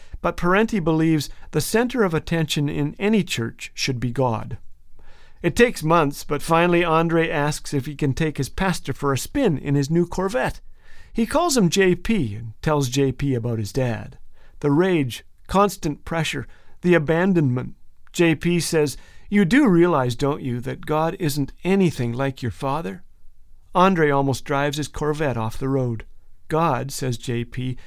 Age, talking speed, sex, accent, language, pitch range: 50-69, 160 wpm, male, American, English, 135-185 Hz